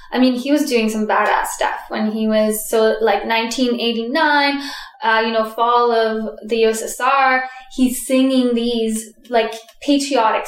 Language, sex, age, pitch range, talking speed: English, female, 10-29, 220-255 Hz, 150 wpm